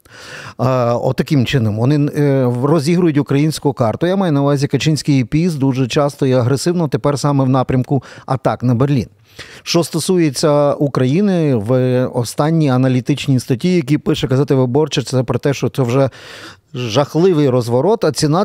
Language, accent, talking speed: Ukrainian, native, 145 wpm